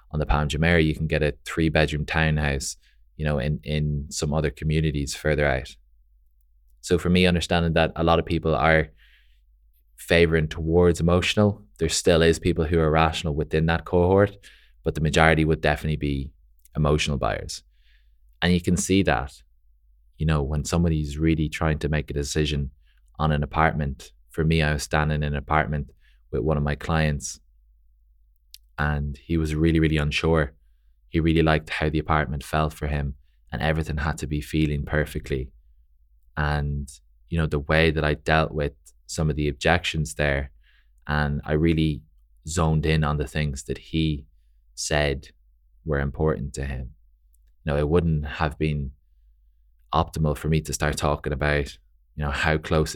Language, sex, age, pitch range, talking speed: English, male, 20-39, 70-80 Hz, 170 wpm